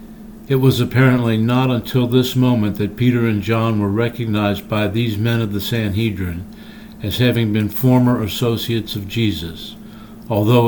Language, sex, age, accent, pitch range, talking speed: English, male, 60-79, American, 105-125 Hz, 150 wpm